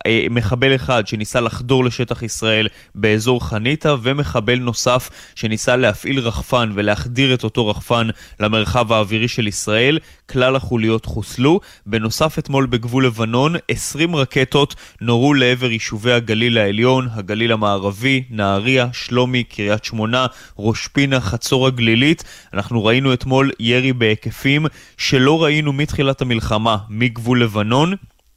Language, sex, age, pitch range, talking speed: Hebrew, male, 20-39, 110-130 Hz, 115 wpm